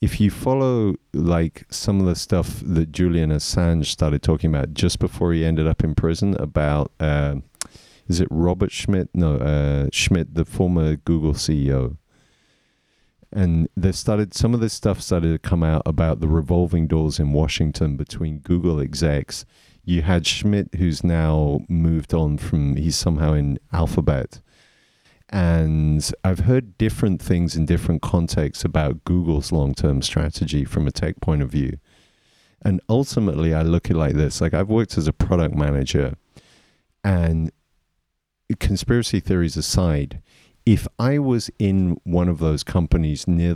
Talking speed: 155 wpm